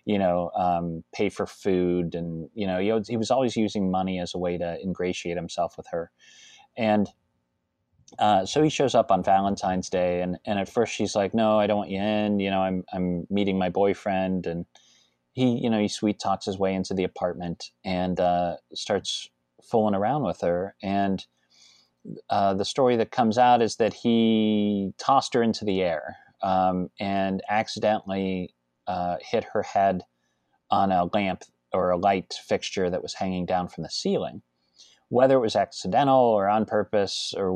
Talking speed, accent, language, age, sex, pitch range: 180 wpm, American, English, 30-49, male, 90-105 Hz